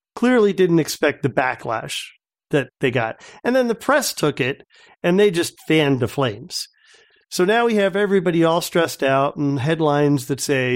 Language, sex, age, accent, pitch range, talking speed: English, male, 50-69, American, 140-190 Hz, 180 wpm